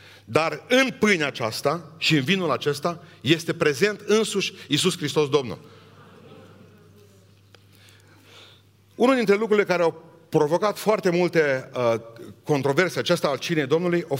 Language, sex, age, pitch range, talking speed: Romanian, male, 40-59, 155-250 Hz, 120 wpm